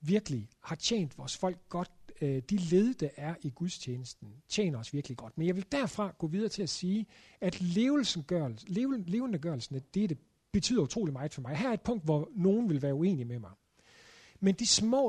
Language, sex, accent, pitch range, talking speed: Danish, male, native, 140-195 Hz, 200 wpm